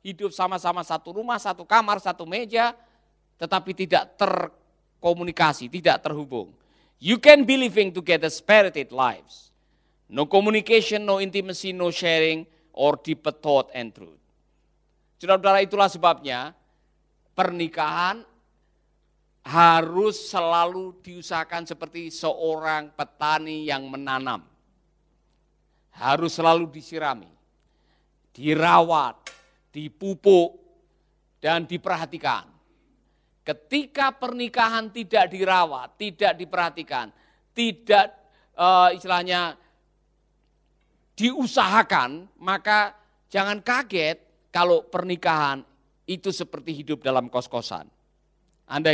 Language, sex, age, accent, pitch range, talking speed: Indonesian, male, 50-69, native, 150-195 Hz, 85 wpm